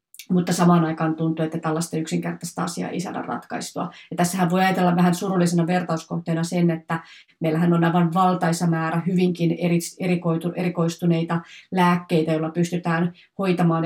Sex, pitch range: female, 170-185 Hz